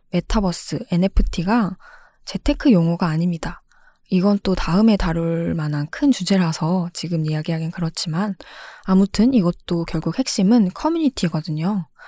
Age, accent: 10-29, native